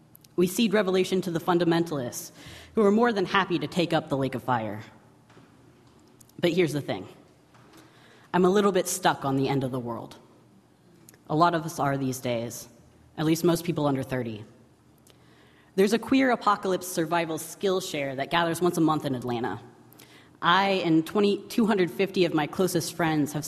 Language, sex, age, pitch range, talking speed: English, female, 30-49, 145-180 Hz, 175 wpm